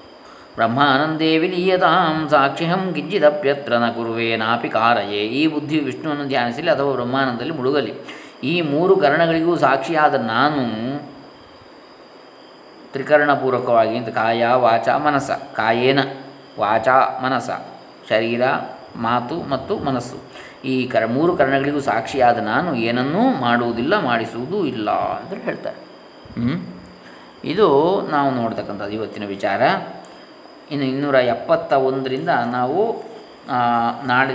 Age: 20-39